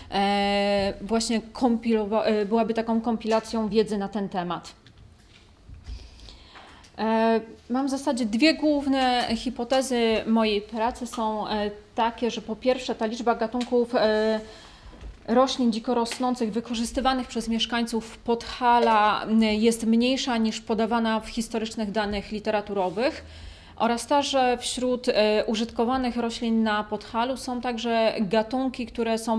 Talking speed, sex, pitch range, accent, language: 100 wpm, female, 210-235 Hz, native, Polish